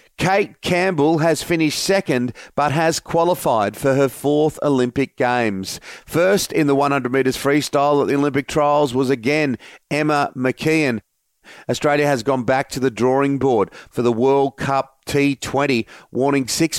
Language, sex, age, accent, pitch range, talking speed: English, male, 40-59, Australian, 130-150 Hz, 145 wpm